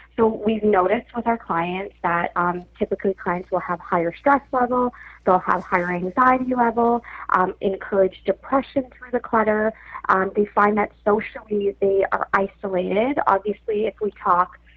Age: 20-39